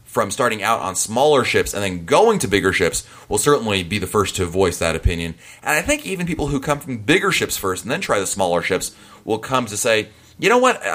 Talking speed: 245 wpm